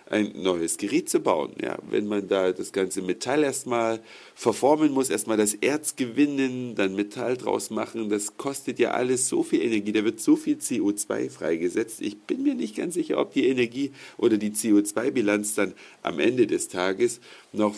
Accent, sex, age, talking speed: German, male, 50-69, 180 wpm